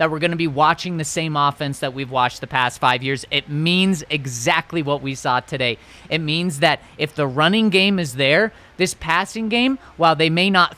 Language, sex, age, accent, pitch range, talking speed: English, male, 30-49, American, 145-195 Hz, 215 wpm